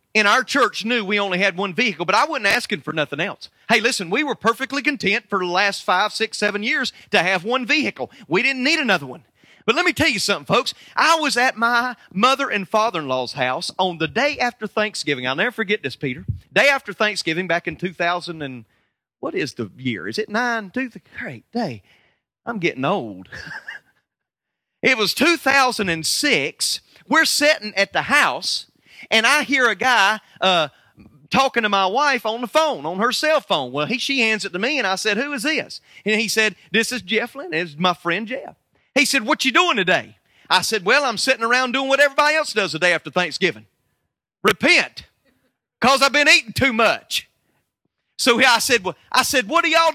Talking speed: 205 wpm